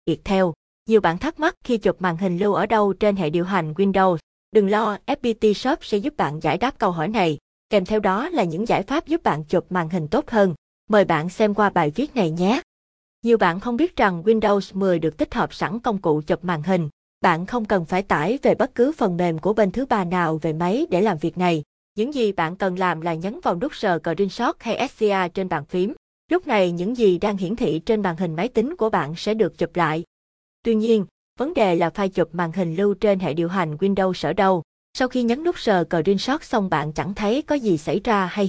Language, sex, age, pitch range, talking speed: Vietnamese, female, 20-39, 175-220 Hz, 245 wpm